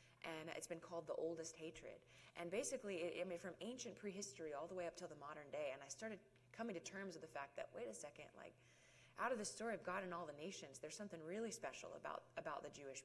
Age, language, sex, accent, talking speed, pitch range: 20-39, English, female, American, 255 wpm, 150-190 Hz